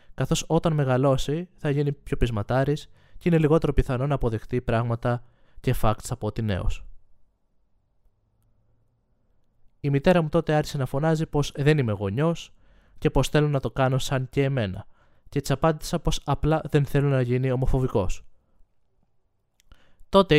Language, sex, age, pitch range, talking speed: Greek, male, 20-39, 115-150 Hz, 145 wpm